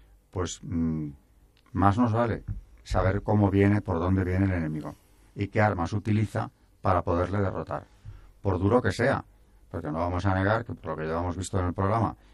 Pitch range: 90-105 Hz